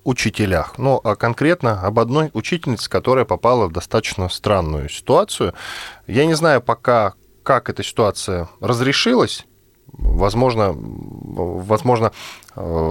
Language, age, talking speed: Russian, 10-29, 105 wpm